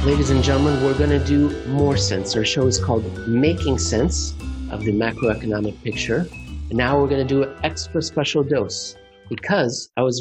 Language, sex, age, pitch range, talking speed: English, male, 50-69, 115-150 Hz, 180 wpm